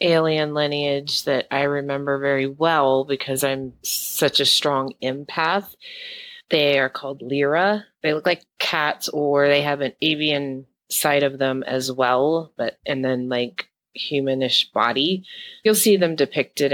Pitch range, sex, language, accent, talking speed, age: 130-150 Hz, female, English, American, 145 wpm, 30-49